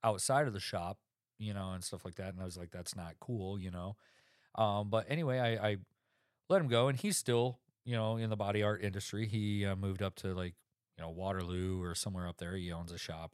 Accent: American